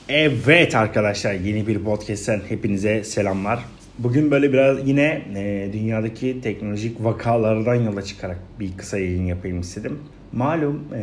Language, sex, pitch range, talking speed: Turkish, male, 105-130 Hz, 120 wpm